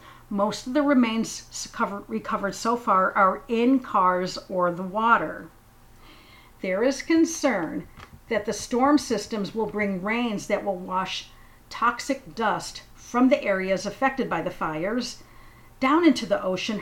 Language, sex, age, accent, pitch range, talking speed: English, female, 50-69, American, 195-255 Hz, 140 wpm